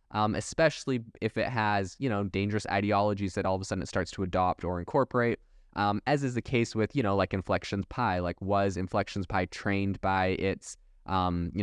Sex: male